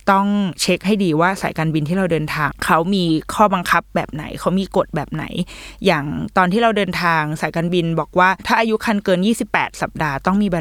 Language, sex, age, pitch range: Thai, female, 20-39, 160-205 Hz